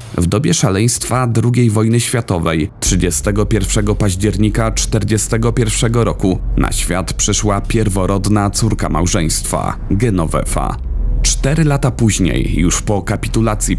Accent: native